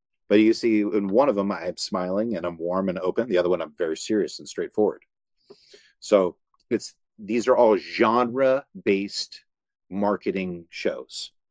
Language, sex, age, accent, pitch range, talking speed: English, male, 40-59, American, 100-140 Hz, 155 wpm